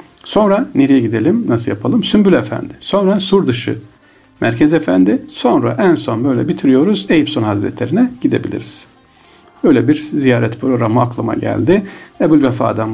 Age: 50-69